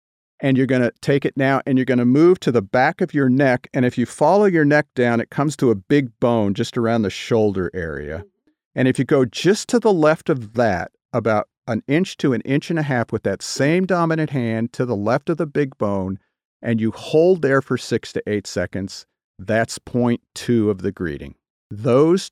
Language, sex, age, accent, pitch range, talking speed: English, male, 40-59, American, 105-135 Hz, 225 wpm